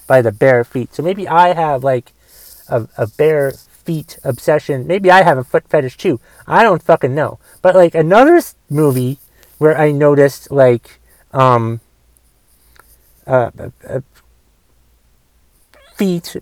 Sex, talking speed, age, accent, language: male, 140 wpm, 30-49, American, English